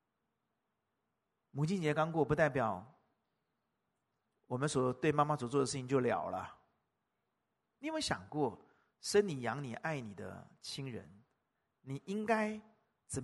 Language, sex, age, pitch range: Chinese, male, 50-69, 130-220 Hz